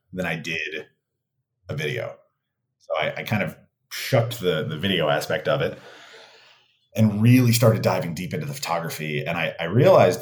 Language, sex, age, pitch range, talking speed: English, male, 30-49, 85-125 Hz, 170 wpm